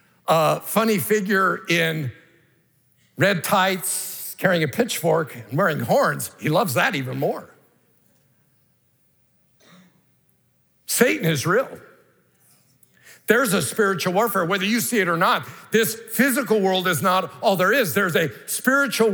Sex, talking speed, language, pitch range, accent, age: male, 130 wpm, English, 175-235 Hz, American, 60-79